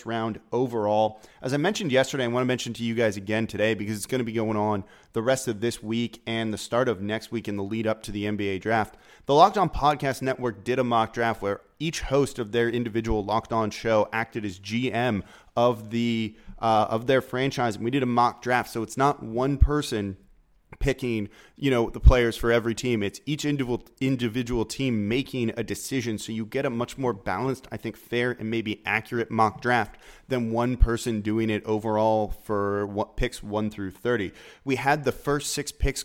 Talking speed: 210 wpm